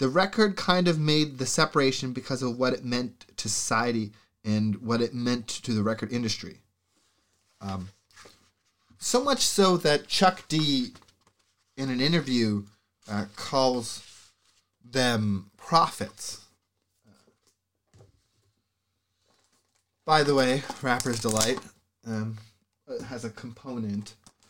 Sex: male